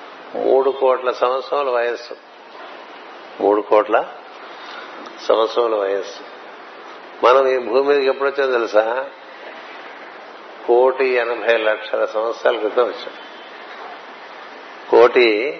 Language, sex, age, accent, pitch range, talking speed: Telugu, male, 60-79, native, 115-135 Hz, 85 wpm